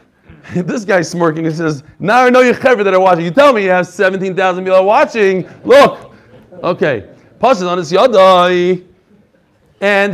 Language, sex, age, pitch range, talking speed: English, male, 40-59, 170-225 Hz, 170 wpm